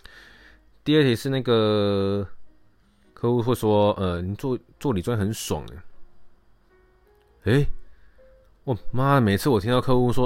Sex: male